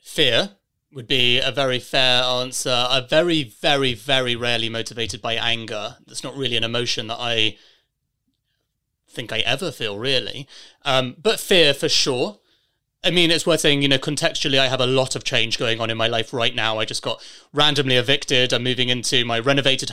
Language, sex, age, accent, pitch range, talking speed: English, male, 30-49, British, 120-140 Hz, 190 wpm